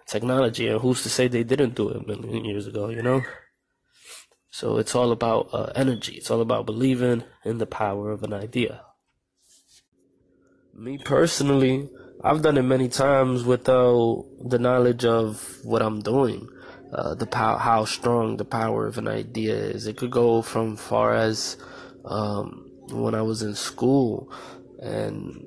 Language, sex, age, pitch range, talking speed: English, male, 20-39, 110-130 Hz, 165 wpm